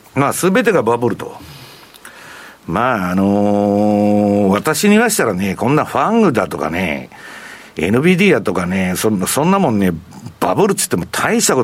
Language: Japanese